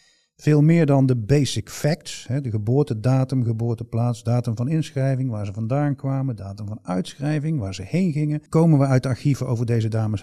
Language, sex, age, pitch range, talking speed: Dutch, male, 50-69, 110-145 Hz, 180 wpm